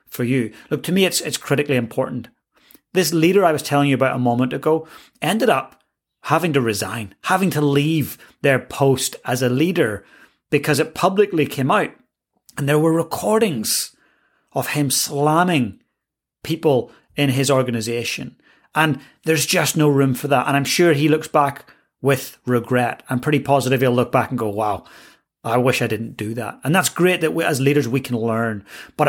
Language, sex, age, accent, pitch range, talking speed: English, male, 30-49, British, 125-155 Hz, 185 wpm